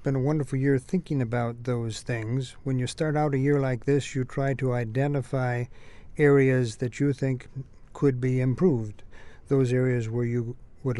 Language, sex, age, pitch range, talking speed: English, male, 50-69, 120-140 Hz, 175 wpm